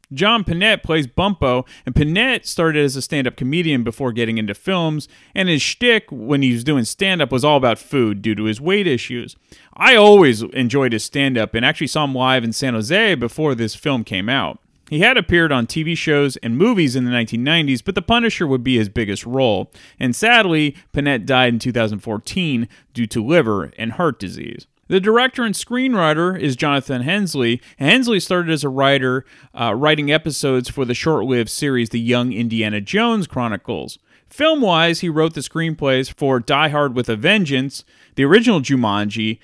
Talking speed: 180 wpm